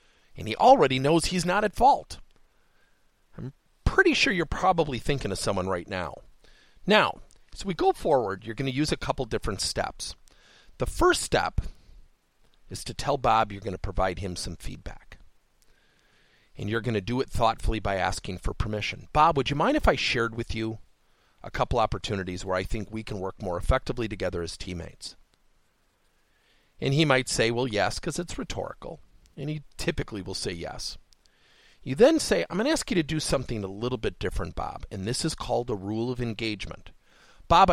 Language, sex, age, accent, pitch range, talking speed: English, male, 40-59, American, 105-150 Hz, 190 wpm